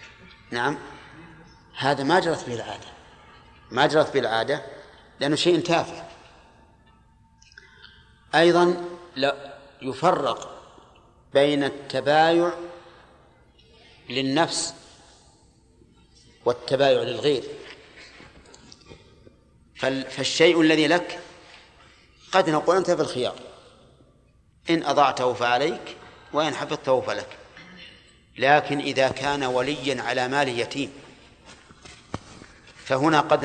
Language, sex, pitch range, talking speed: Arabic, male, 135-165 Hz, 80 wpm